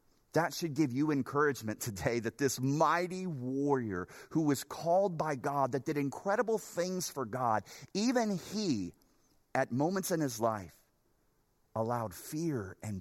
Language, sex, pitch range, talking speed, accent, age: English, male, 115-160 Hz, 145 wpm, American, 30-49